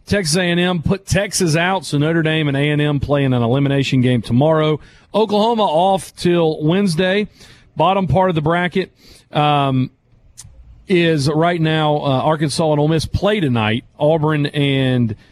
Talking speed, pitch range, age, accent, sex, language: 145 wpm, 130-185 Hz, 40-59, American, male, English